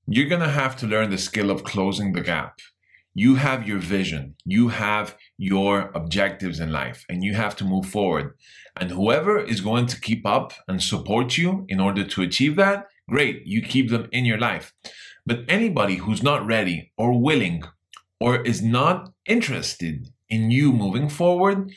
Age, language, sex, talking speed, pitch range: 30-49, English, male, 180 wpm, 95-130 Hz